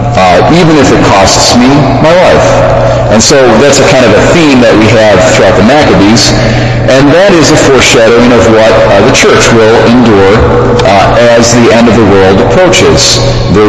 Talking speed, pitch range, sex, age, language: 190 wpm, 105-120 Hz, male, 50-69, English